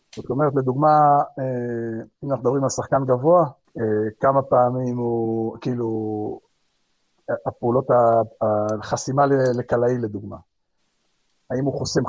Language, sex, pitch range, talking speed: Hebrew, male, 115-145 Hz, 90 wpm